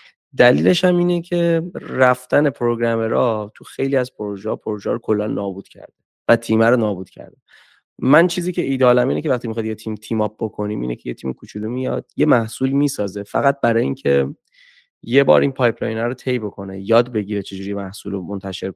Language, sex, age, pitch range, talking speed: Persian, male, 20-39, 100-120 Hz, 190 wpm